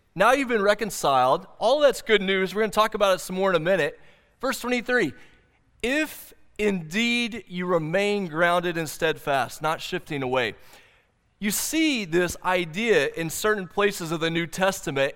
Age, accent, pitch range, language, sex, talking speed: 30-49, American, 155-210 Hz, English, male, 165 wpm